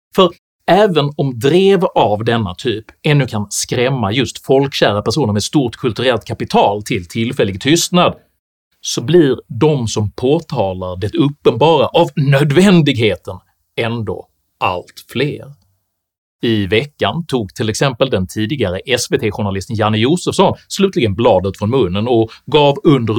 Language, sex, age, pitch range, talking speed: Swedish, male, 30-49, 100-145 Hz, 125 wpm